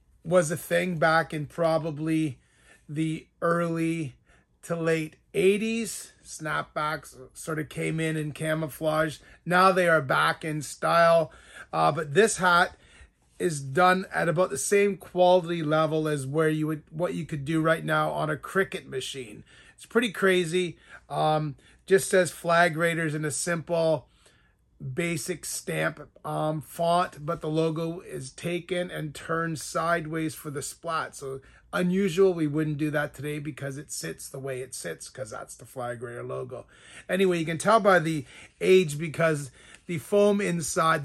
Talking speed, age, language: 155 wpm, 30-49, English